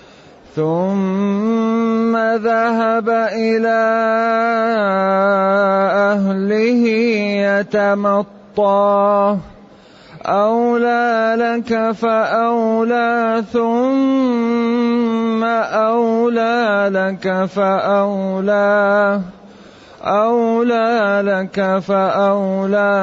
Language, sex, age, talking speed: Arabic, male, 30-49, 40 wpm